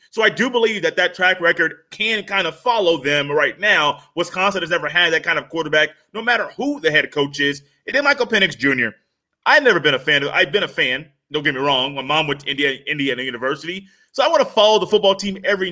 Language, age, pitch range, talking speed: English, 30-49, 160-215 Hz, 245 wpm